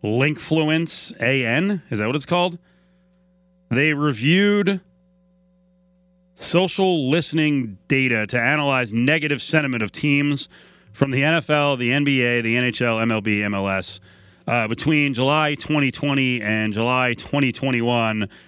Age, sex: 30-49, male